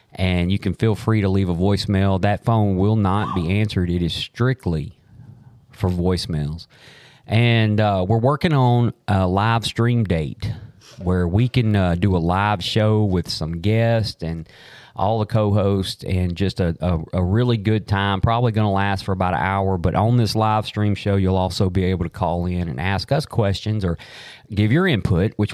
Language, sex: English, male